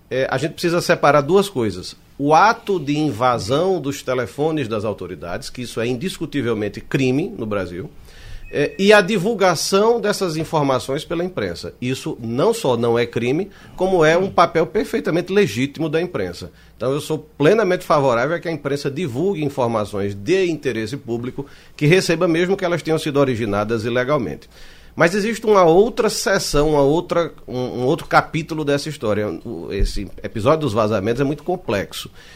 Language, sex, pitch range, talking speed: Portuguese, male, 125-175 Hz, 160 wpm